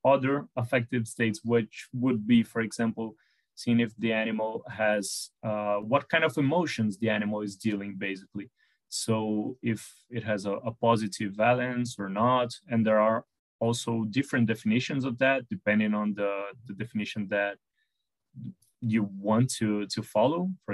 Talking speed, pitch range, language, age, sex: 155 wpm, 105-125 Hz, English, 20-39, male